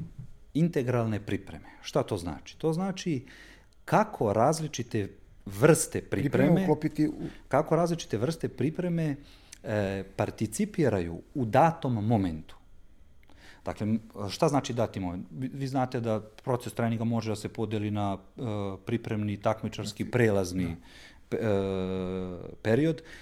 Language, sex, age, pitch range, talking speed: Croatian, male, 40-59, 100-150 Hz, 95 wpm